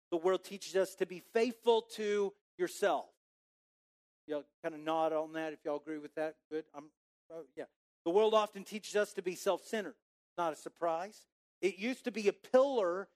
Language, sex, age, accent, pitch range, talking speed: English, male, 40-59, American, 180-265 Hz, 190 wpm